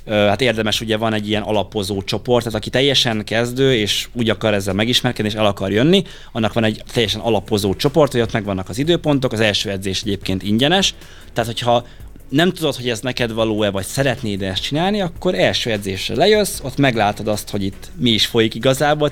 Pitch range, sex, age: 100-125 Hz, male, 30-49